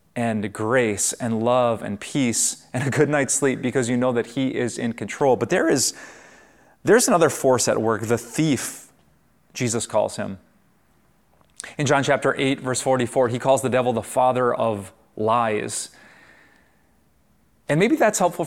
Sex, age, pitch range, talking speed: male, 30-49, 120-150 Hz, 160 wpm